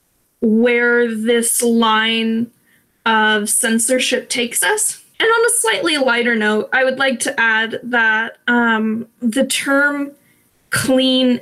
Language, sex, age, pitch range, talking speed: English, female, 10-29, 230-270 Hz, 120 wpm